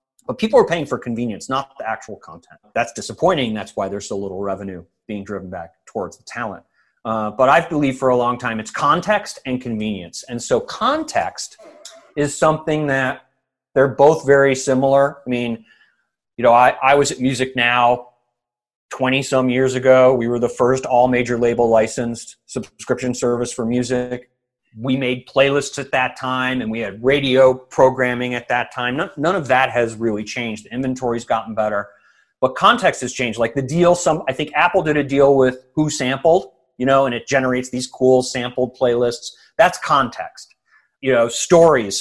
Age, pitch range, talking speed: 30-49, 120-140 Hz, 175 wpm